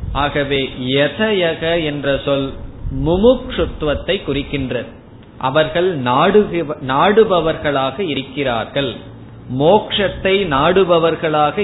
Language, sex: Tamil, male